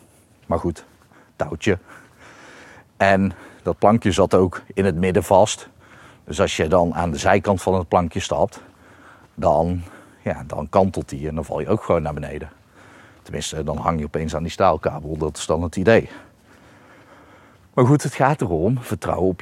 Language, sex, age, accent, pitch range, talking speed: Dutch, male, 40-59, Dutch, 85-100 Hz, 170 wpm